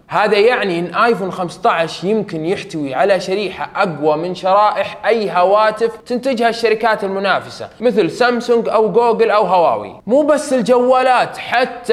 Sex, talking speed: male, 135 wpm